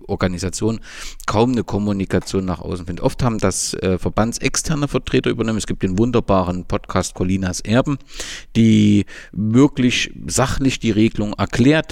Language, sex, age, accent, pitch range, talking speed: German, male, 50-69, German, 95-125 Hz, 135 wpm